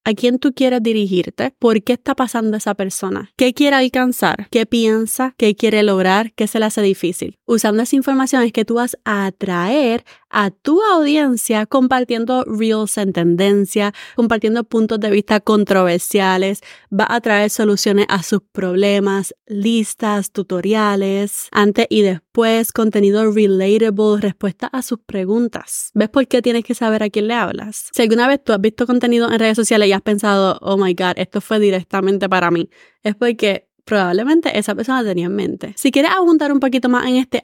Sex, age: female, 20-39